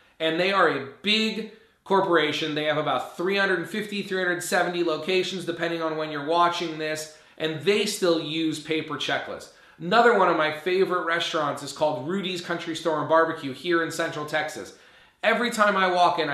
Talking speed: 165 wpm